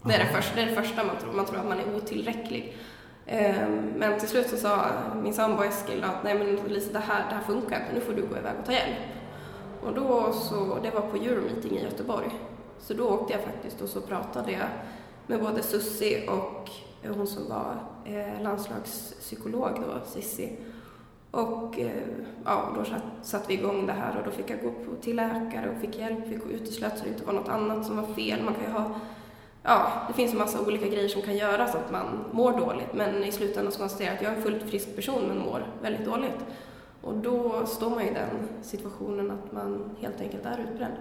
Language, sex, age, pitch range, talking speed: Swedish, female, 20-39, 205-225 Hz, 220 wpm